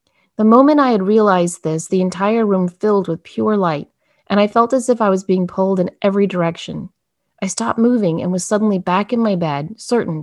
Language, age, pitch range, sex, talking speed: English, 30-49, 170-215 Hz, female, 210 wpm